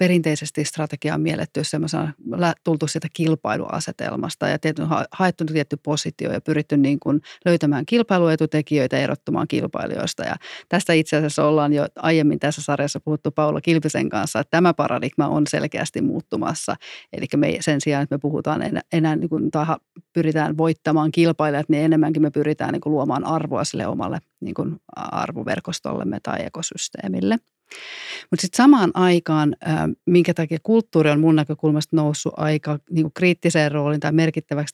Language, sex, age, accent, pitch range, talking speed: English, female, 30-49, Finnish, 150-170 Hz, 140 wpm